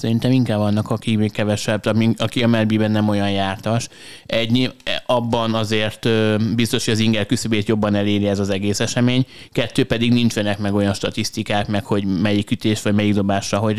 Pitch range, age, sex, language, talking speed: 105-110 Hz, 20-39, male, Hungarian, 175 wpm